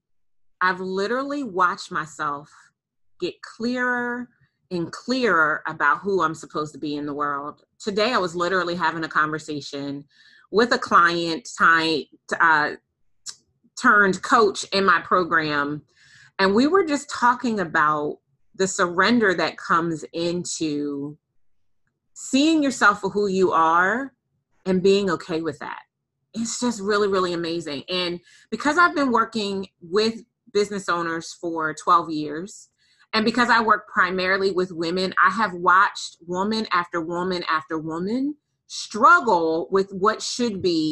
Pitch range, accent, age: 165-235 Hz, American, 30-49